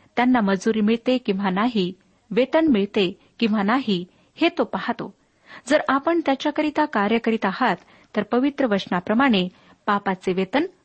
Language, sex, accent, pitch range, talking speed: Marathi, female, native, 195-265 Hz, 120 wpm